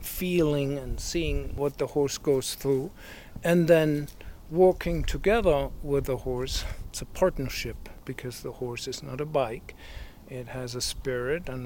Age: 60-79